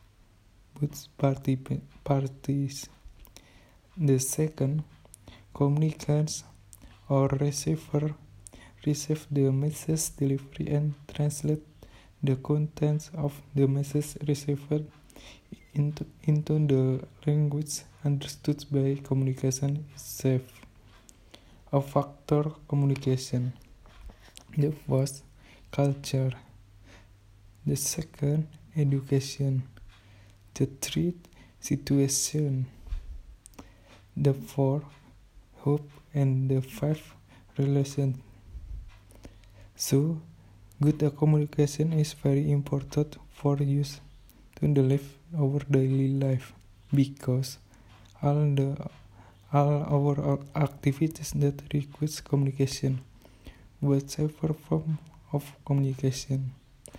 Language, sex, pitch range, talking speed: Indonesian, male, 115-145 Hz, 80 wpm